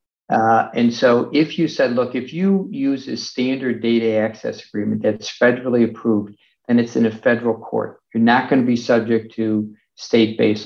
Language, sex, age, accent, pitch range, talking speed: English, male, 50-69, American, 115-135 Hz, 180 wpm